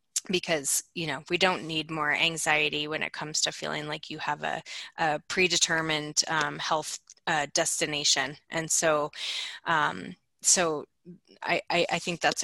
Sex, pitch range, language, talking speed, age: female, 155-170 Hz, English, 150 wpm, 20-39